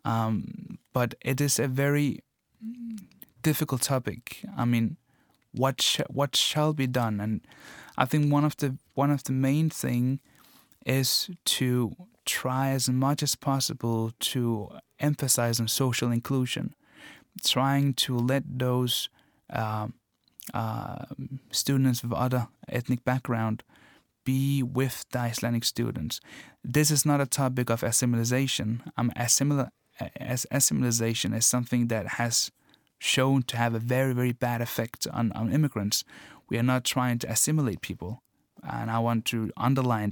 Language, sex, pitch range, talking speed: English, male, 115-135 Hz, 140 wpm